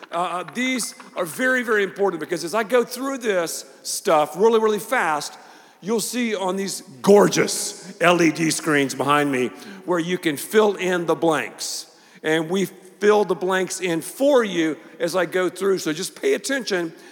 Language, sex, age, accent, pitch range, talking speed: English, male, 50-69, American, 170-235 Hz, 170 wpm